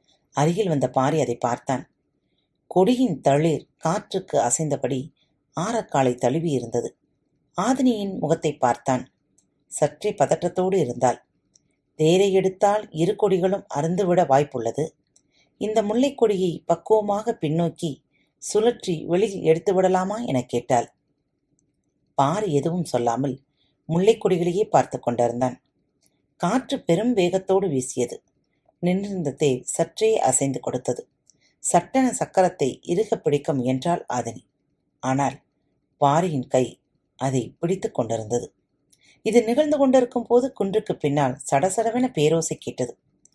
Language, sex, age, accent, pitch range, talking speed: Tamil, female, 30-49, native, 135-190 Hz, 90 wpm